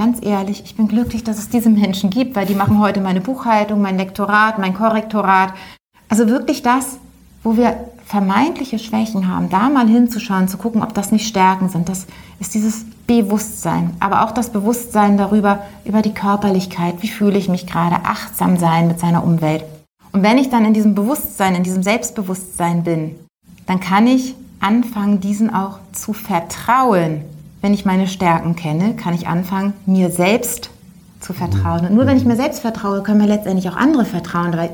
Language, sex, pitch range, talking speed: German, female, 180-220 Hz, 180 wpm